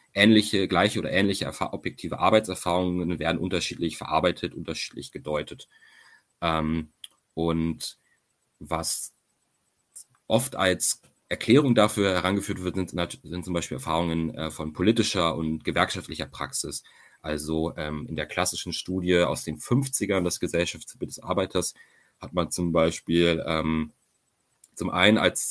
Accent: German